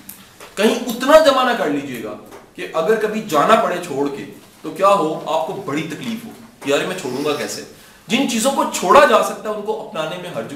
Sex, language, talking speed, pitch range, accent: male, English, 190 wpm, 150-220 Hz, Indian